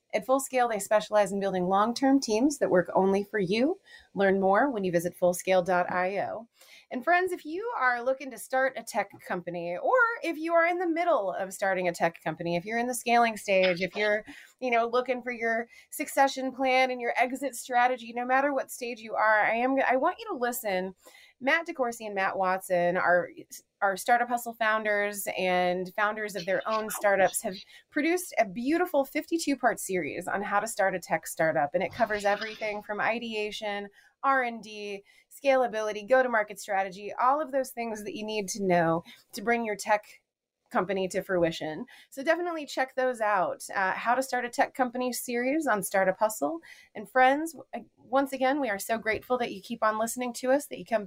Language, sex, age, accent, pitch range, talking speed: English, female, 30-49, American, 195-260 Hz, 190 wpm